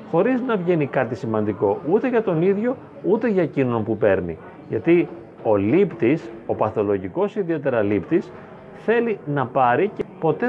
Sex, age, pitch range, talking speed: male, 30-49, 135-200 Hz, 150 wpm